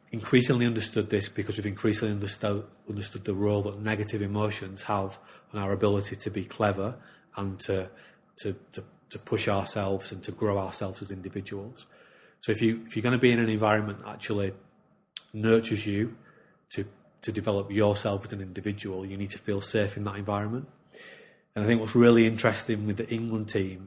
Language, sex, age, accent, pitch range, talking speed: English, male, 30-49, British, 100-110 Hz, 185 wpm